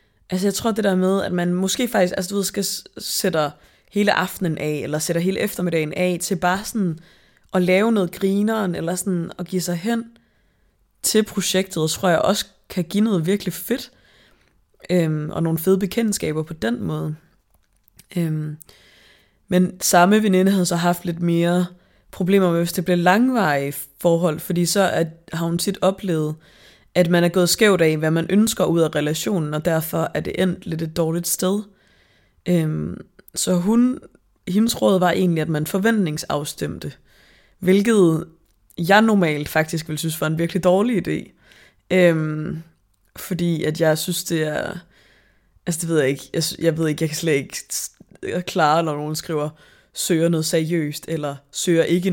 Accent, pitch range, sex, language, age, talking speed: native, 160-190 Hz, female, Danish, 20-39, 170 wpm